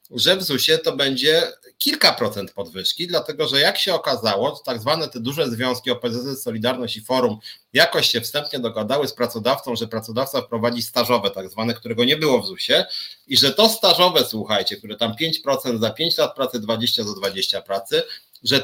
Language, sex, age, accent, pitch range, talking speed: Polish, male, 30-49, native, 120-180 Hz, 185 wpm